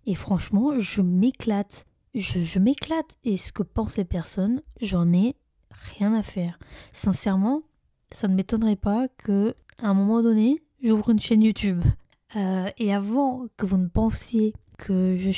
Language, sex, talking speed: French, female, 155 wpm